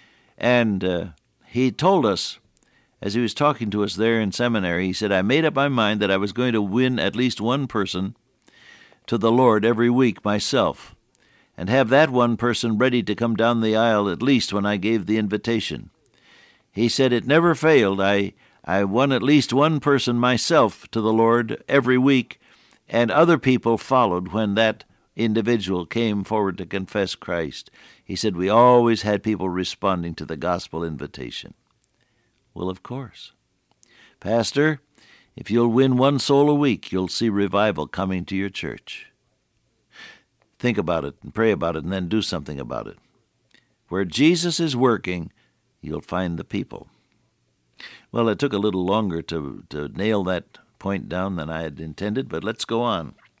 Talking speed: 175 wpm